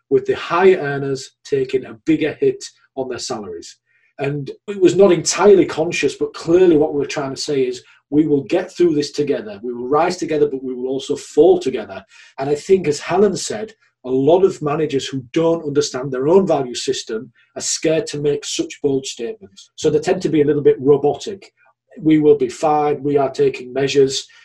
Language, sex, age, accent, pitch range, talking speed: English, male, 40-59, British, 145-225 Hz, 200 wpm